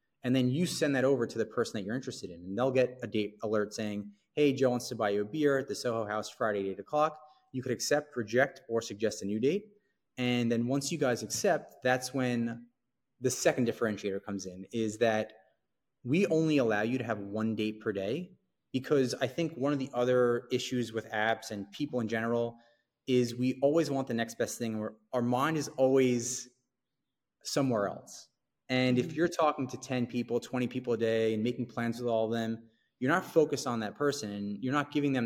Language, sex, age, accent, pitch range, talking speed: English, male, 30-49, American, 110-135 Hz, 215 wpm